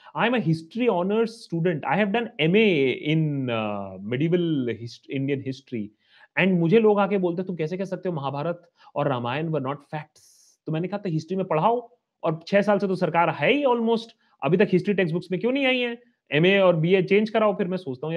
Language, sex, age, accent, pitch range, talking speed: Hindi, male, 30-49, native, 150-210 Hz, 170 wpm